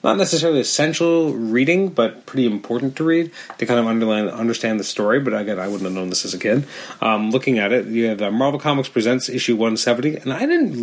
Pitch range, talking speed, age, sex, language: 100-130 Hz, 235 wpm, 30-49, male, English